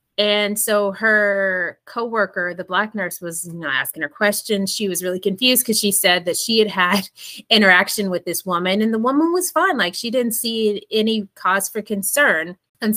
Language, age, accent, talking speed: English, 20-39, American, 190 wpm